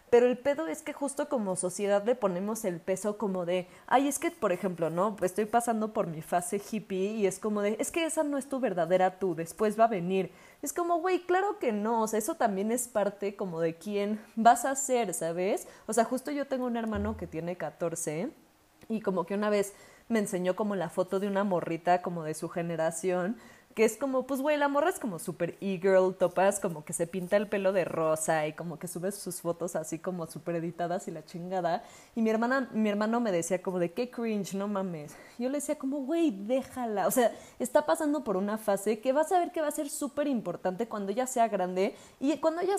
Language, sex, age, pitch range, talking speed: Spanish, female, 20-39, 185-260 Hz, 230 wpm